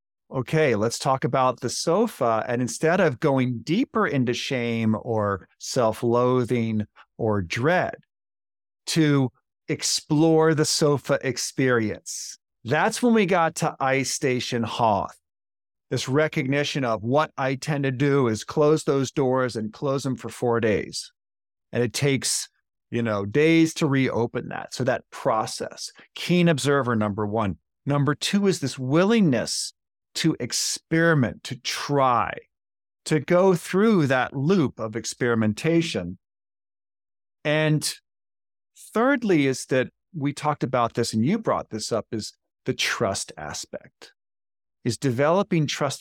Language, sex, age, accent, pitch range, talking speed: English, male, 40-59, American, 120-160 Hz, 130 wpm